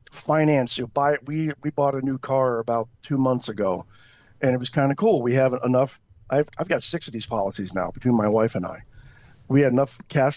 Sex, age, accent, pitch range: male, 50-69, American, 120-150 Hz